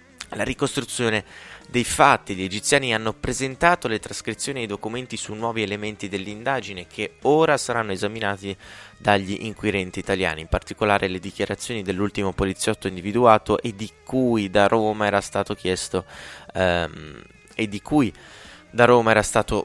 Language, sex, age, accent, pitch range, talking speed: Italian, male, 20-39, native, 95-115 Hz, 145 wpm